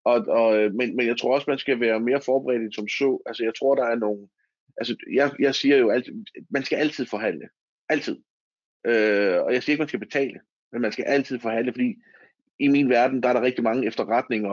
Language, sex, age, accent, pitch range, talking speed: Danish, male, 30-49, native, 115-145 Hz, 225 wpm